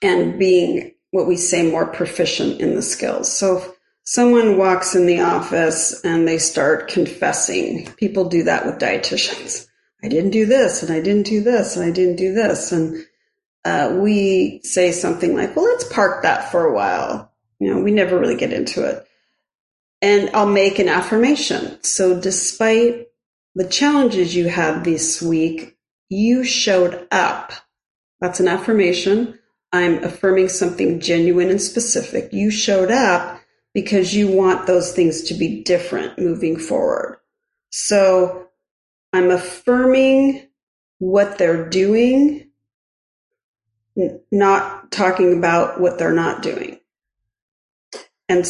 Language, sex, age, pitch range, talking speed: English, female, 40-59, 175-225 Hz, 140 wpm